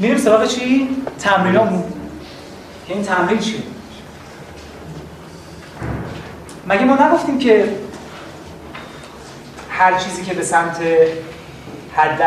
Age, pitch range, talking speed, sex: 30-49, 160-235 Hz, 85 wpm, male